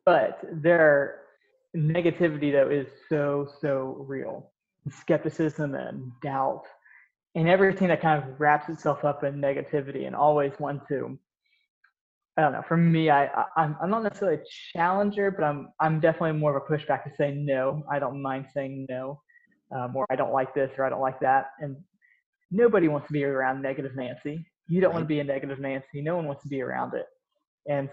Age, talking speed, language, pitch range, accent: 20-39, 185 wpm, English, 140-165 Hz, American